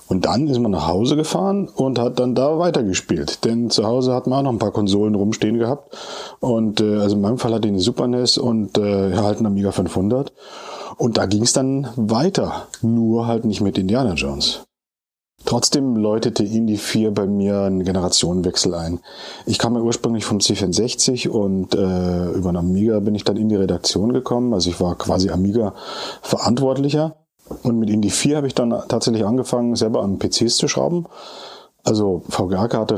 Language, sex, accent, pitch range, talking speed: German, male, German, 100-125 Hz, 180 wpm